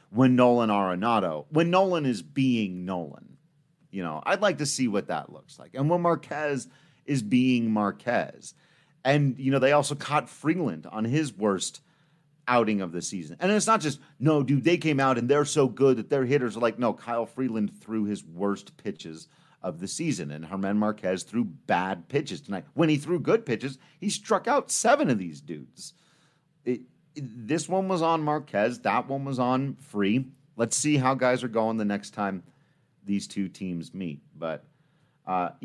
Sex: male